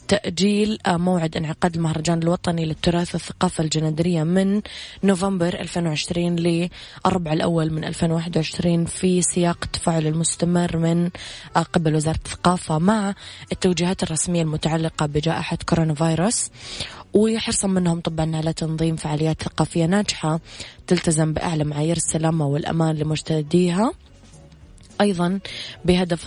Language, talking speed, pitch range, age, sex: English, 105 wpm, 155-175 Hz, 20-39, female